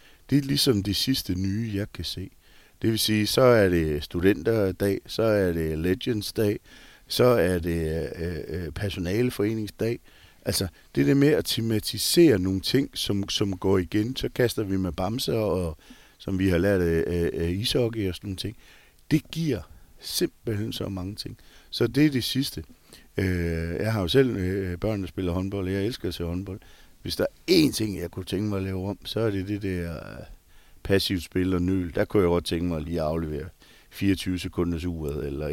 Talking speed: 195 wpm